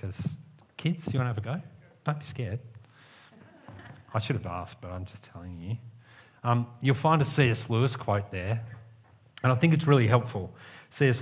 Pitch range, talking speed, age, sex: 105-130 Hz, 195 wpm, 40-59, male